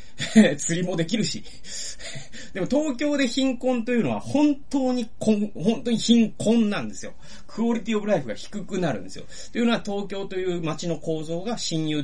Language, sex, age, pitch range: Japanese, male, 30-49, 140-230 Hz